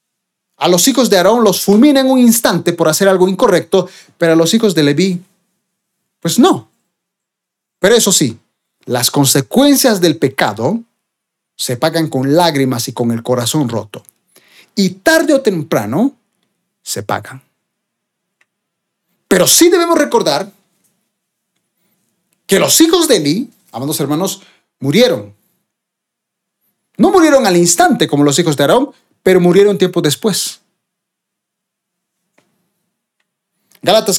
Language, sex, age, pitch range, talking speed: Spanish, male, 40-59, 155-230 Hz, 120 wpm